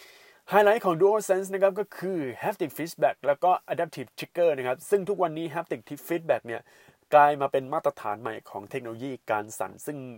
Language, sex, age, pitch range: Thai, male, 20-39, 130-180 Hz